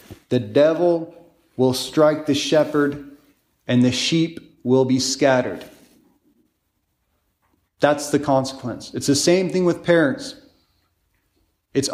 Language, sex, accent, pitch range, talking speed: English, male, American, 130-155 Hz, 110 wpm